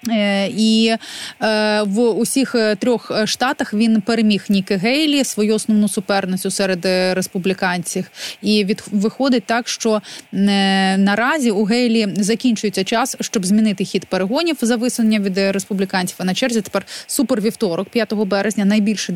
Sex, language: female, Ukrainian